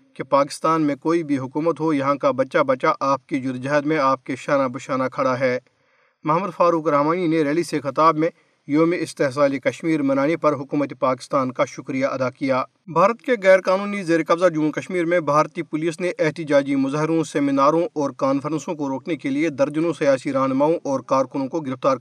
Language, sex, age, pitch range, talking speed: Urdu, male, 40-59, 145-175 Hz, 185 wpm